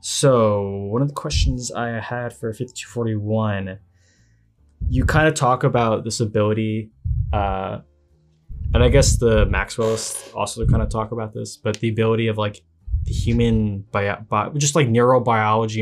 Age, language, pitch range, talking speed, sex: 20-39, English, 100-115 Hz, 145 wpm, male